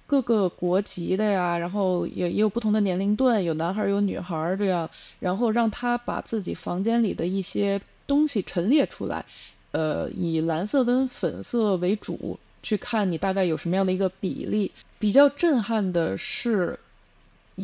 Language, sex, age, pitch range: Chinese, female, 20-39, 180-245 Hz